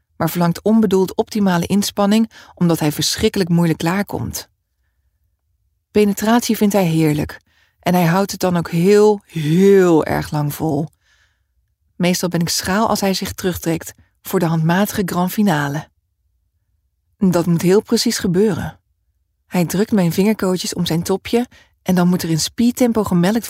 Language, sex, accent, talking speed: English, female, Dutch, 145 wpm